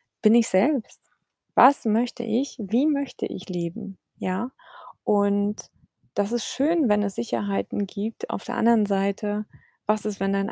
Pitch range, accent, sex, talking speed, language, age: 190-235 Hz, German, female, 155 wpm, German, 20-39